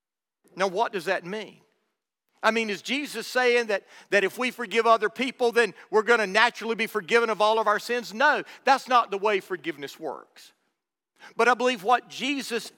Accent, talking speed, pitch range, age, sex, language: American, 195 wpm, 175-240 Hz, 50-69, male, English